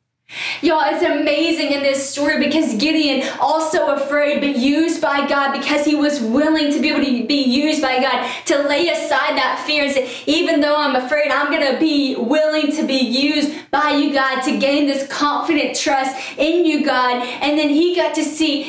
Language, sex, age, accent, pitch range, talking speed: English, female, 20-39, American, 245-290 Hz, 200 wpm